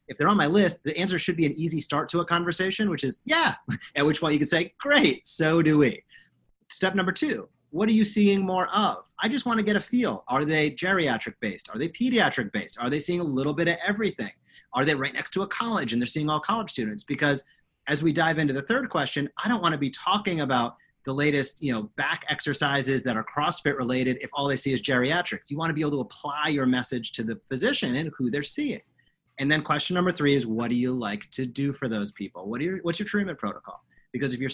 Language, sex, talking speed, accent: English, male, 240 wpm, American